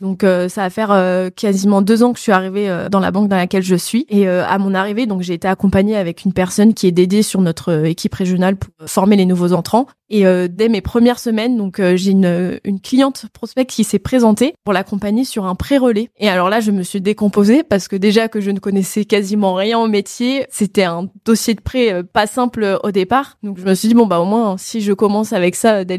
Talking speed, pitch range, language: 250 wpm, 185-215 Hz, French